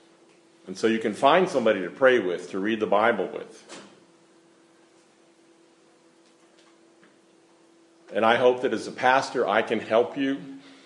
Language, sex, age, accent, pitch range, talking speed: English, male, 50-69, American, 110-140 Hz, 140 wpm